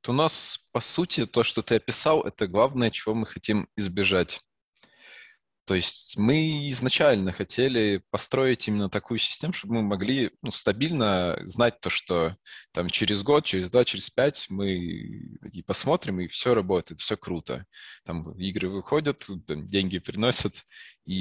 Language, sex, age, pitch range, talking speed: Russian, male, 20-39, 95-110 Hz, 155 wpm